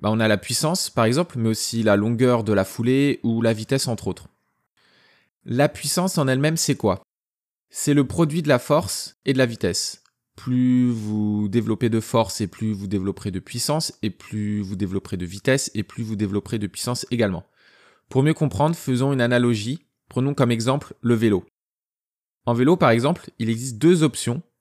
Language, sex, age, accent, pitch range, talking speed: French, male, 20-39, French, 110-140 Hz, 190 wpm